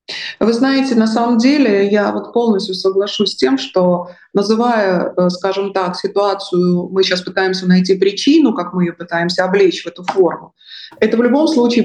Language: Russian